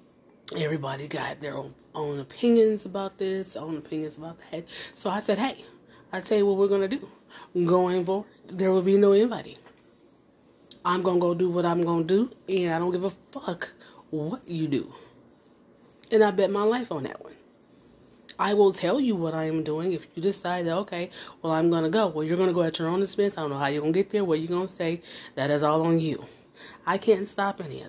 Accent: American